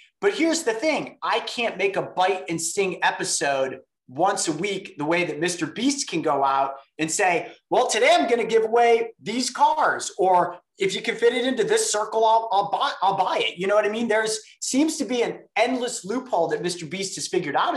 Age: 30-49